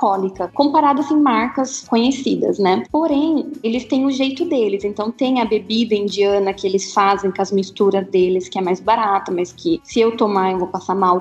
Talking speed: 200 wpm